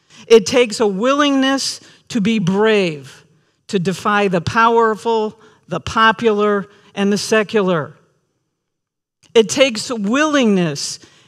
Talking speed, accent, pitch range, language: 105 wpm, American, 155-210 Hz, English